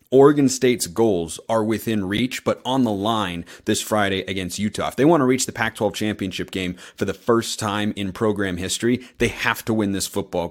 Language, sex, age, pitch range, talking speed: English, male, 30-49, 100-120 Hz, 205 wpm